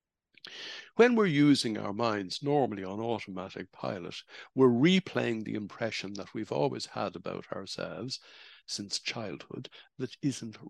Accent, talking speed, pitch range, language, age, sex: Irish, 130 wpm, 100-135 Hz, English, 60-79, male